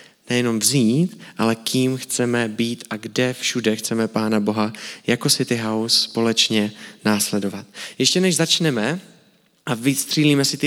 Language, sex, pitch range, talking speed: Czech, male, 120-150 Hz, 135 wpm